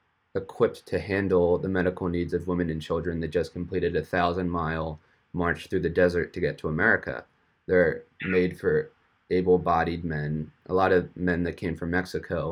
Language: English